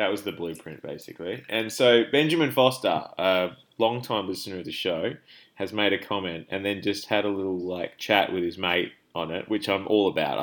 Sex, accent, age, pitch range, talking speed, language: male, Australian, 20-39, 85-100 Hz, 205 wpm, English